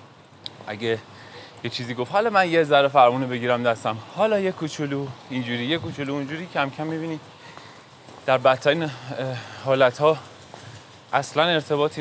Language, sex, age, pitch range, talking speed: Persian, male, 20-39, 110-140 Hz, 130 wpm